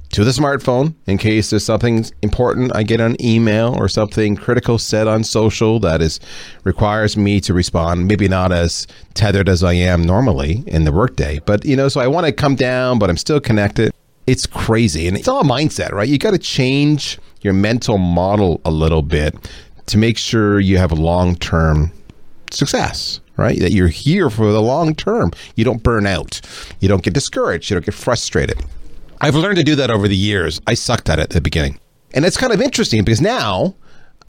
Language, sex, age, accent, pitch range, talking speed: English, male, 30-49, American, 90-120 Hz, 200 wpm